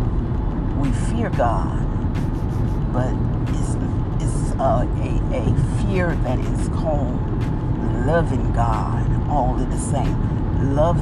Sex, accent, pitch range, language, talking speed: female, American, 110-130 Hz, English, 105 wpm